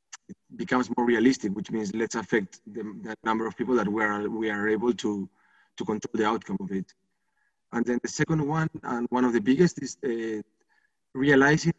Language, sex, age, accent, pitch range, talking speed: English, male, 20-39, Spanish, 110-125 Hz, 200 wpm